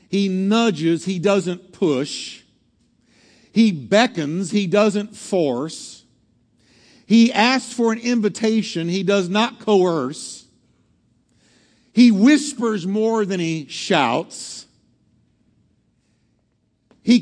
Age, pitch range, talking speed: 50-69, 180-225 Hz, 90 wpm